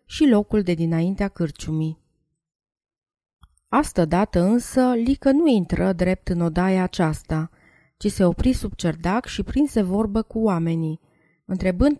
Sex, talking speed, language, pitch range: female, 125 wpm, Romanian, 165-220 Hz